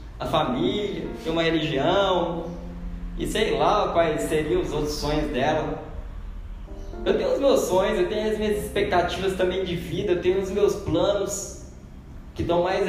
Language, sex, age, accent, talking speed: Portuguese, male, 20-39, Brazilian, 165 wpm